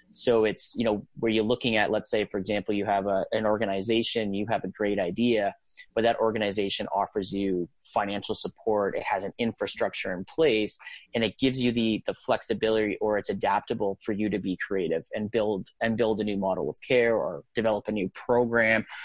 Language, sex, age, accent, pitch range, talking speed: English, male, 30-49, American, 100-120 Hz, 200 wpm